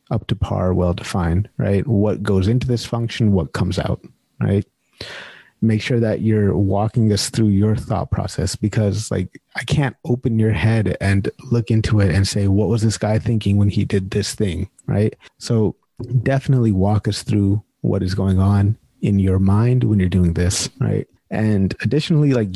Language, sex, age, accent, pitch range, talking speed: English, male, 30-49, American, 100-120 Hz, 180 wpm